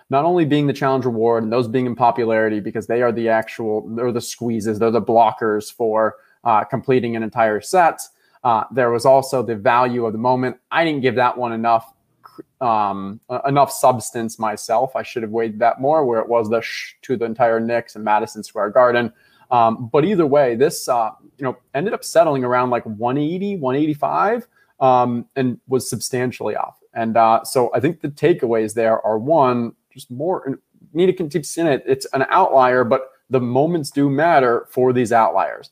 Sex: male